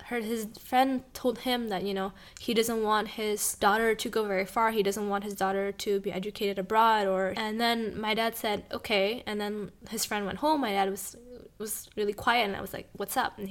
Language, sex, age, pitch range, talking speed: English, female, 10-29, 200-220 Hz, 230 wpm